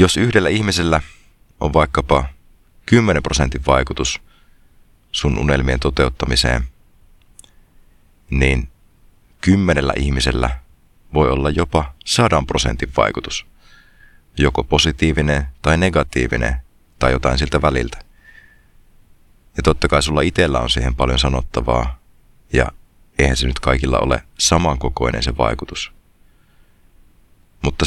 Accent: native